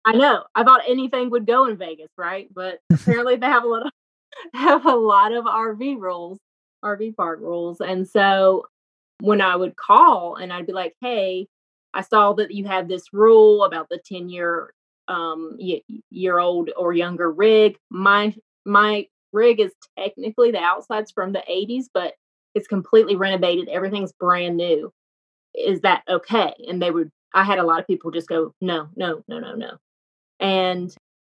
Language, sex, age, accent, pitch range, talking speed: English, female, 20-39, American, 175-210 Hz, 175 wpm